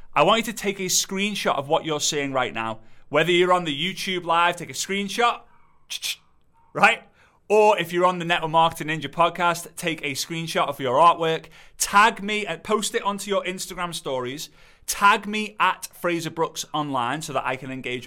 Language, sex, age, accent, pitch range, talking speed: English, male, 30-49, British, 135-175 Hz, 195 wpm